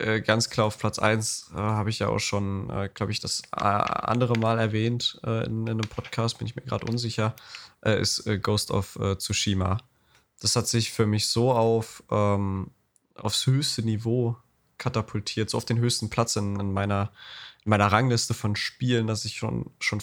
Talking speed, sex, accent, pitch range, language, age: 185 wpm, male, German, 105-120 Hz, German, 20-39